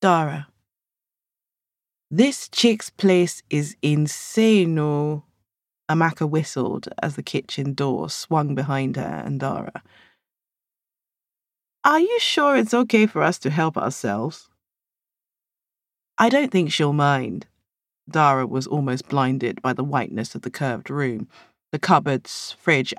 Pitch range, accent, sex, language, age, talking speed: 145-215 Hz, British, female, English, 30-49, 120 wpm